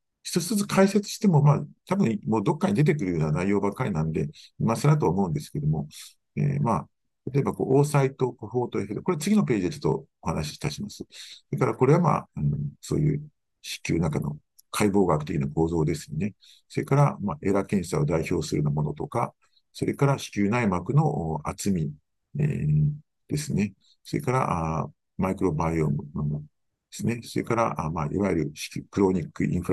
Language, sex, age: Japanese, male, 50-69